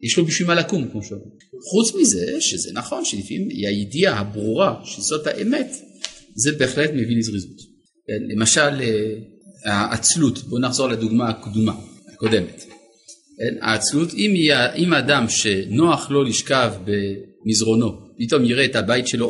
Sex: male